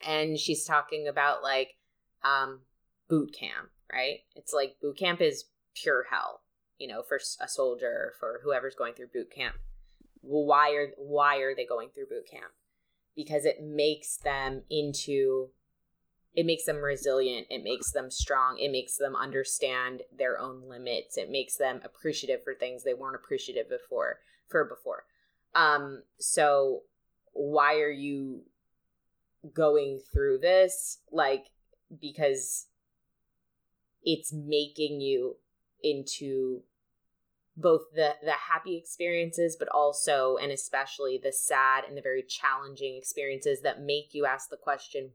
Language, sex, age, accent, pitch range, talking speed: English, female, 20-39, American, 135-165 Hz, 140 wpm